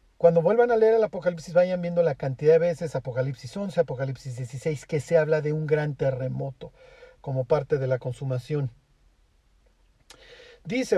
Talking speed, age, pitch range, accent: 160 wpm, 50-69, 150-225 Hz, Mexican